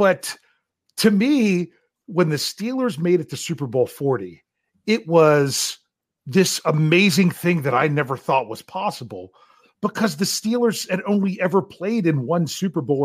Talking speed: 155 wpm